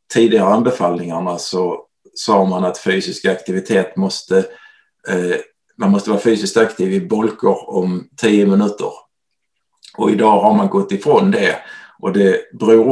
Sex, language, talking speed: male, English, 135 wpm